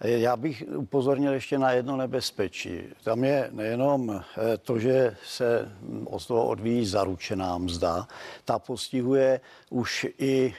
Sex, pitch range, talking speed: male, 115-135 Hz, 125 wpm